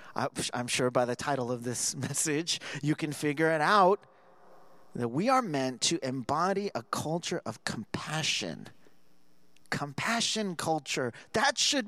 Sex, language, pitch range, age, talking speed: male, English, 125-175 Hz, 30-49, 135 wpm